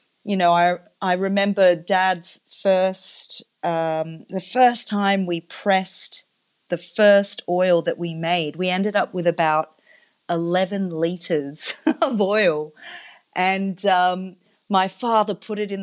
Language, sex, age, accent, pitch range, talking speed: English, female, 40-59, Australian, 170-205 Hz, 135 wpm